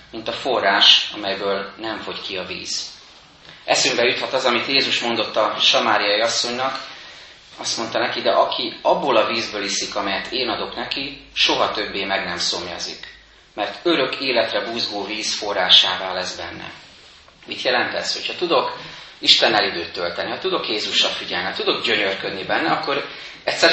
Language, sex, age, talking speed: Hungarian, male, 30-49, 155 wpm